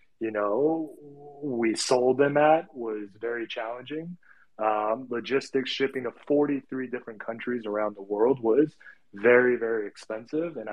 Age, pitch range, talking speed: 20-39, 110-135 Hz, 135 wpm